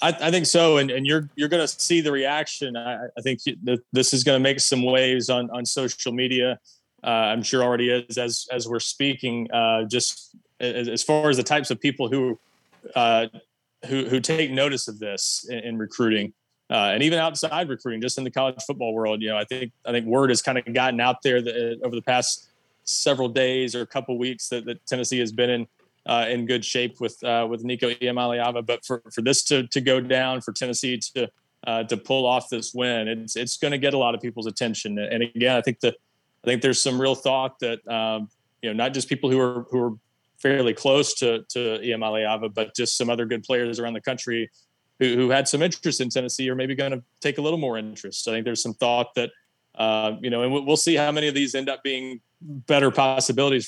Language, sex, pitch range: English, male, 120-135 Hz